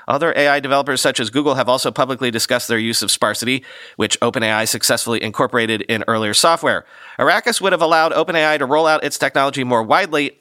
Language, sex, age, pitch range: English, male, 30-49, 115-155 Hz